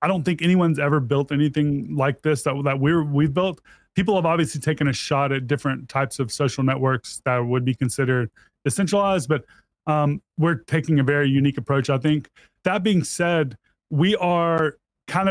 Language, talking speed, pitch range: English, 190 wpm, 135-160 Hz